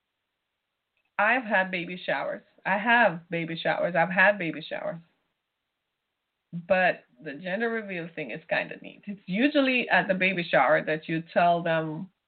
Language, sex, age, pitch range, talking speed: English, female, 20-39, 175-245 Hz, 150 wpm